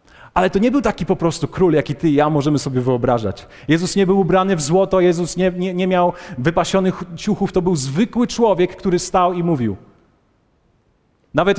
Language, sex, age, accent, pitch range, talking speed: Polish, male, 40-59, native, 120-190 Hz, 190 wpm